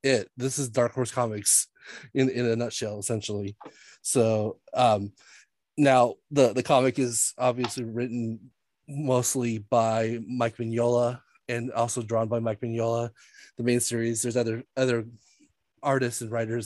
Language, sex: English, male